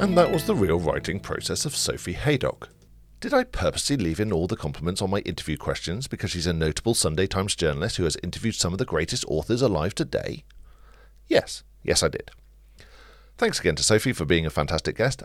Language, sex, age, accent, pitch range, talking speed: English, male, 50-69, British, 80-130 Hz, 205 wpm